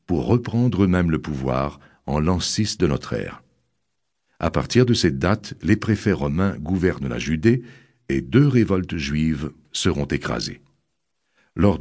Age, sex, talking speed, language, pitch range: 60-79, male, 145 wpm, French, 75-110 Hz